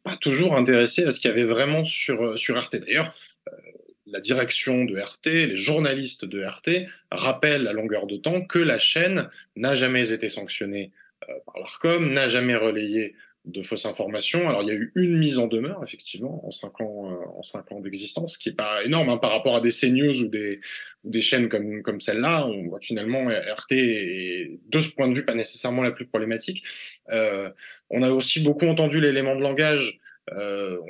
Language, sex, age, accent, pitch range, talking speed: French, male, 20-39, French, 110-150 Hz, 200 wpm